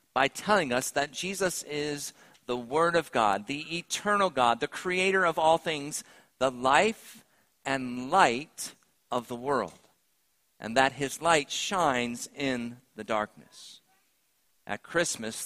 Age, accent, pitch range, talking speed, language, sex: 50-69, American, 130-170 Hz, 135 wpm, English, male